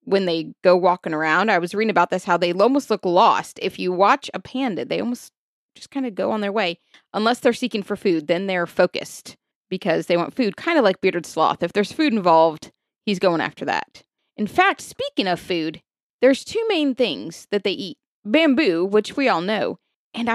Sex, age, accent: female, 30-49, American